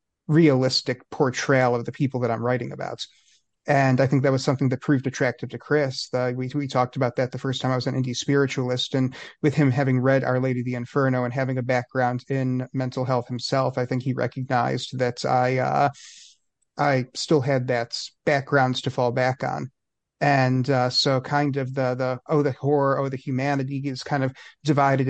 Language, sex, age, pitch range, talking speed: English, male, 30-49, 125-140 Hz, 205 wpm